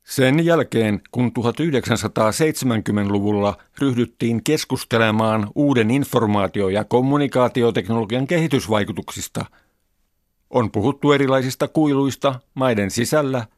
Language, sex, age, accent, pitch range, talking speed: Finnish, male, 50-69, native, 110-145 Hz, 75 wpm